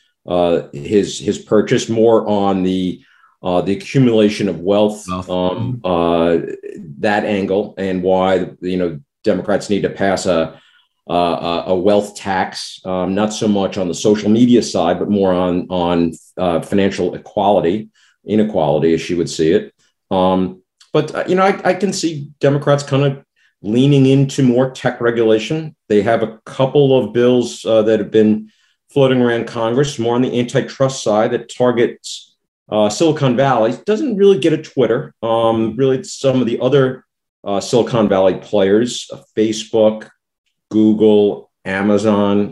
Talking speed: 155 wpm